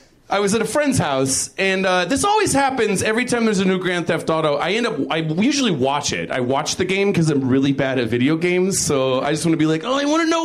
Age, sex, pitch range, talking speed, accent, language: 40-59, male, 165-235 Hz, 270 wpm, American, English